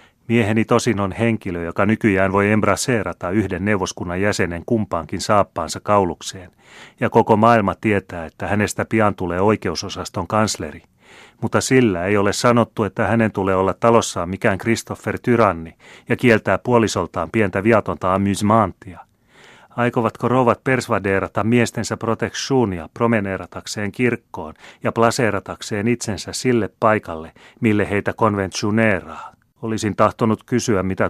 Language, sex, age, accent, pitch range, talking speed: Finnish, male, 30-49, native, 95-115 Hz, 120 wpm